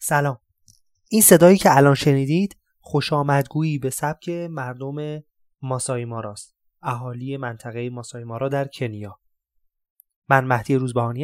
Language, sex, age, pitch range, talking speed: Persian, male, 20-39, 120-150 Hz, 105 wpm